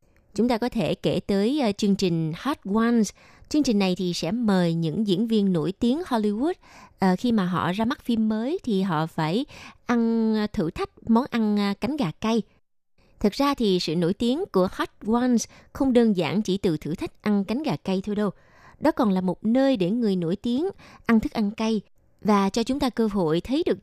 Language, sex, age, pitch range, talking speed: Vietnamese, female, 20-39, 185-245 Hz, 210 wpm